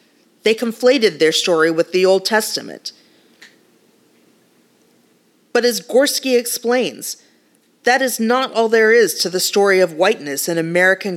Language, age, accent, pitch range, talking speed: English, 40-59, American, 175-225 Hz, 135 wpm